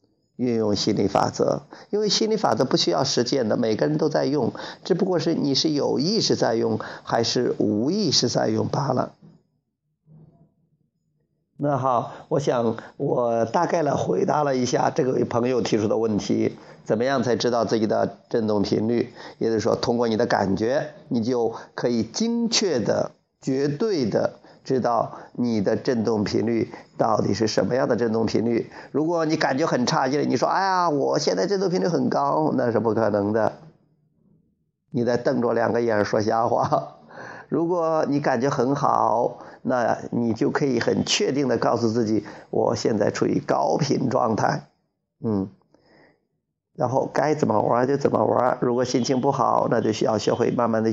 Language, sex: Chinese, male